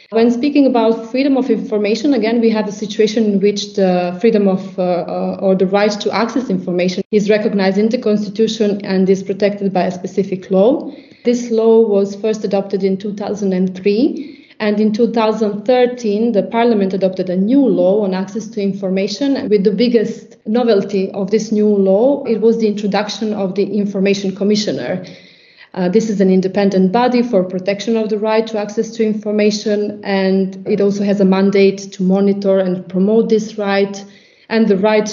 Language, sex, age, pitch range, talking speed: English, female, 30-49, 195-225 Hz, 175 wpm